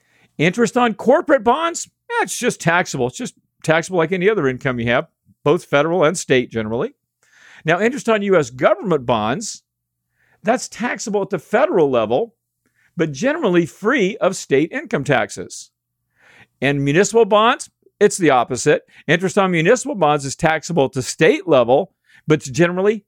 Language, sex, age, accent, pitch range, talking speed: English, male, 50-69, American, 125-195 Hz, 155 wpm